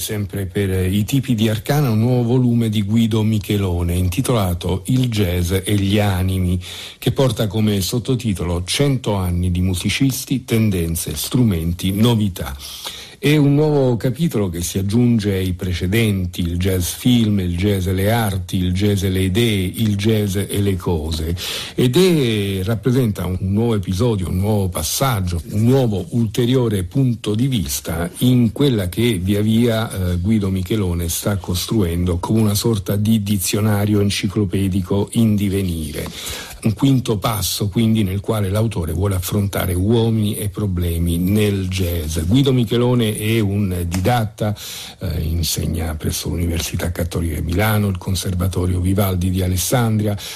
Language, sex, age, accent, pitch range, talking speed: Italian, male, 50-69, native, 90-115 Hz, 145 wpm